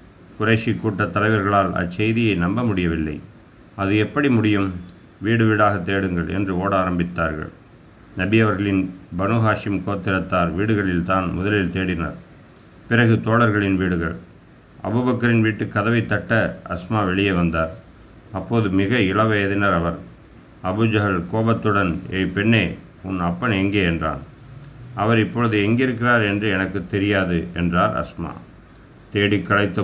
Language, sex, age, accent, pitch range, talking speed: Tamil, male, 50-69, native, 90-110 Hz, 105 wpm